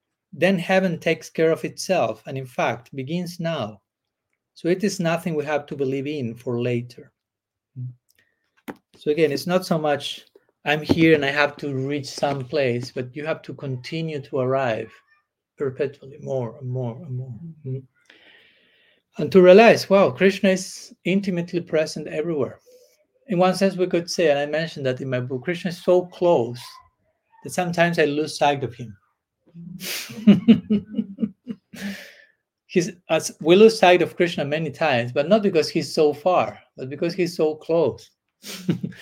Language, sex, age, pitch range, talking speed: English, male, 40-59, 135-185 Hz, 155 wpm